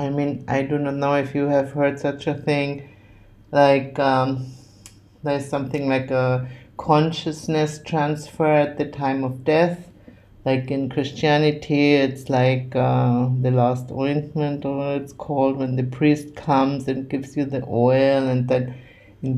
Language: English